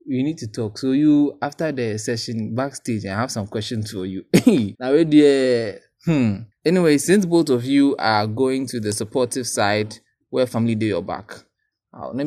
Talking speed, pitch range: 165 wpm, 110-140 Hz